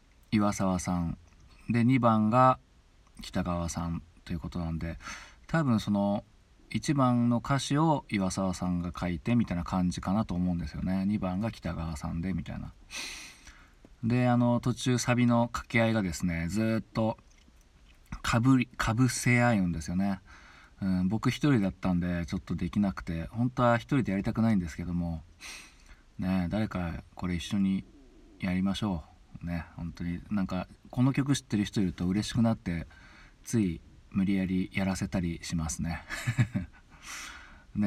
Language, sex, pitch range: Japanese, male, 85-120 Hz